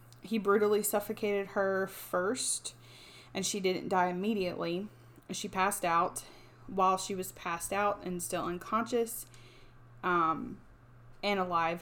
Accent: American